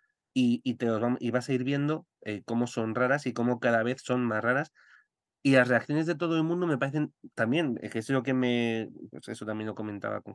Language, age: Spanish, 30-49